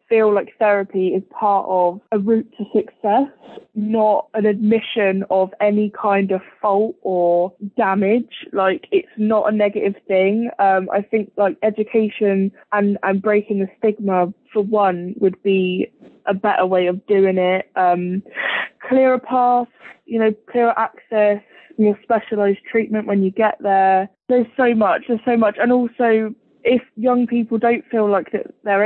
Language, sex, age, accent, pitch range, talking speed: English, female, 20-39, British, 195-225 Hz, 160 wpm